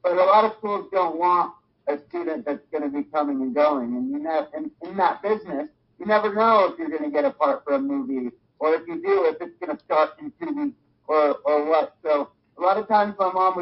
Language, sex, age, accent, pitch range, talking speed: English, male, 50-69, American, 135-205 Hz, 250 wpm